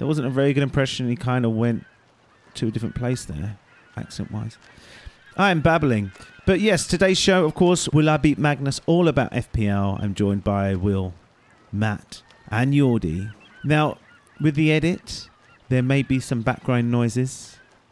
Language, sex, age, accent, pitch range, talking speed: English, male, 40-59, British, 110-155 Hz, 165 wpm